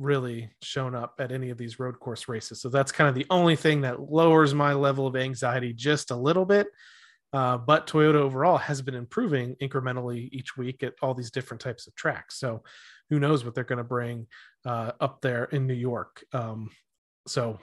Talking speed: 200 wpm